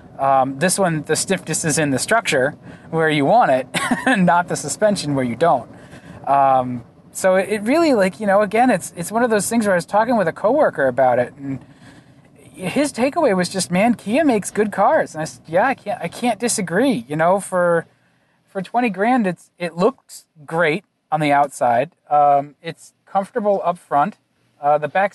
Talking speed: 200 wpm